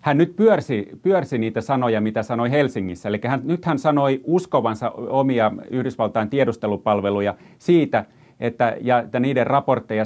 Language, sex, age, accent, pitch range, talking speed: Finnish, male, 30-49, native, 110-140 Hz, 130 wpm